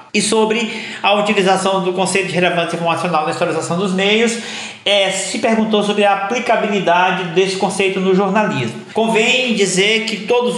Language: Portuguese